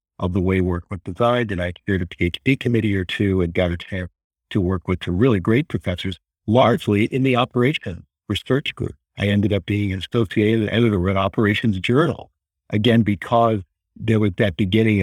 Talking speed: 190 wpm